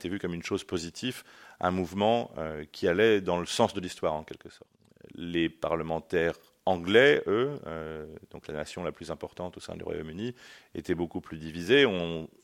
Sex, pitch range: male, 80-100 Hz